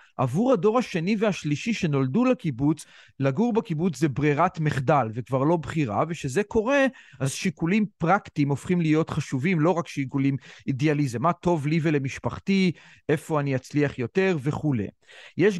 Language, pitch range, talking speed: Hebrew, 140-180 Hz, 140 wpm